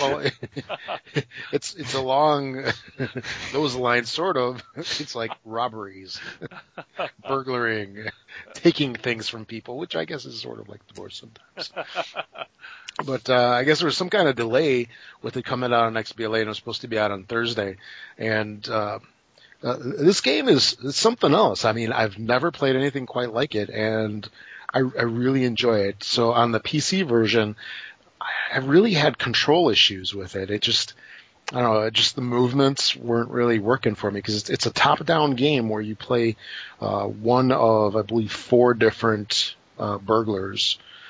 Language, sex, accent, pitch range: English, male, American, 105-125 Hz